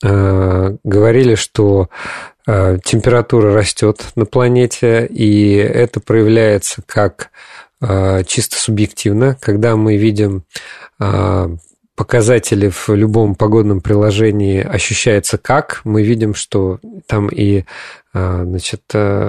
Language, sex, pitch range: Russian, male, 100-125 Hz